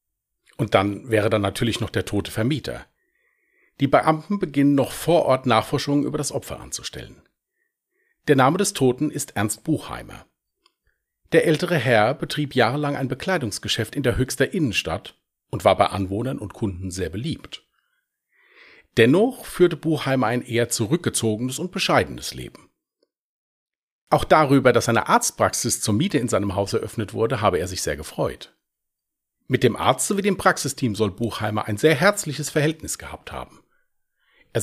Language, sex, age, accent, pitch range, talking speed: German, male, 40-59, German, 105-170 Hz, 150 wpm